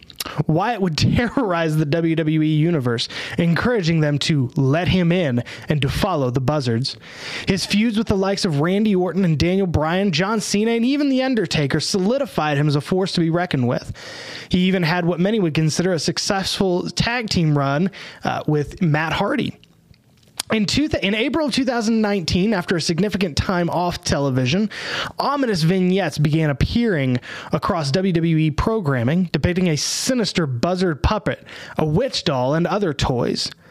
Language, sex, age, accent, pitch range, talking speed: English, male, 20-39, American, 155-205 Hz, 155 wpm